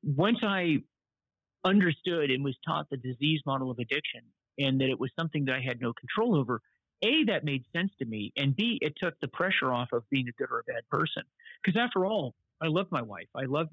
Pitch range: 125-180 Hz